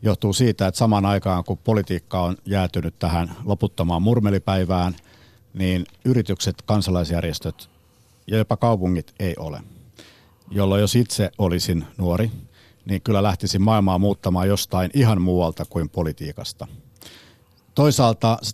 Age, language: 60-79, Finnish